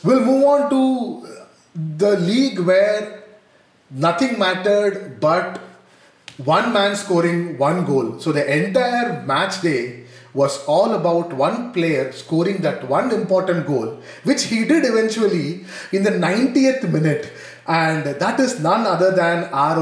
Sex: male